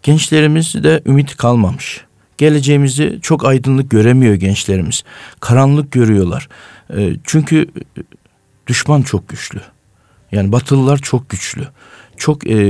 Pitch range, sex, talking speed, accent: 115-145 Hz, male, 90 wpm, native